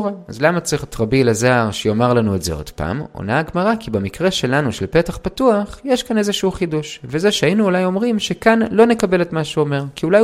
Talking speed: 215 wpm